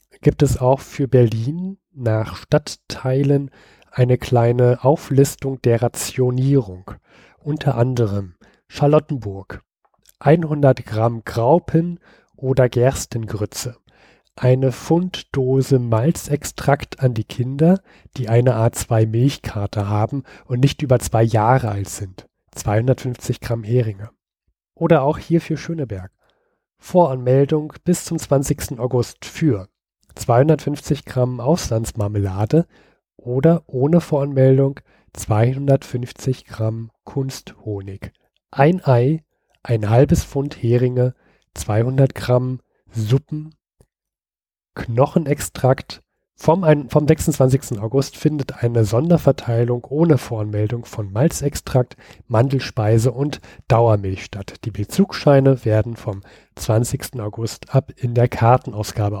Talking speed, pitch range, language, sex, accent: 100 wpm, 110-140 Hz, German, male, German